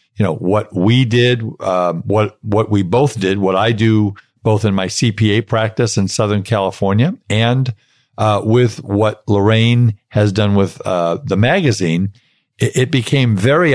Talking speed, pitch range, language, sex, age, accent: 160 wpm, 100-125 Hz, English, male, 50-69, American